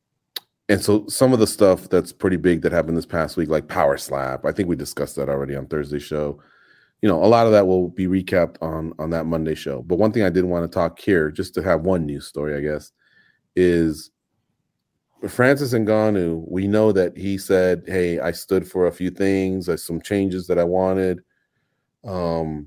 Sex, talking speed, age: male, 210 wpm, 30-49